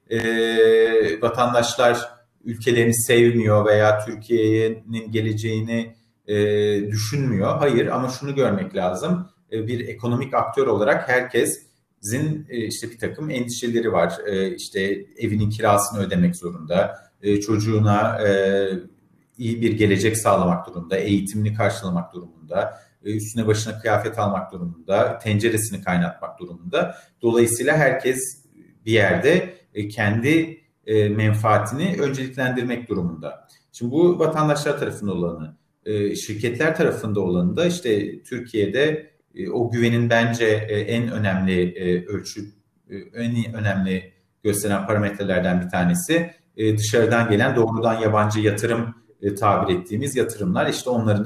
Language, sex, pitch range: Turkish, male, 105-125 Hz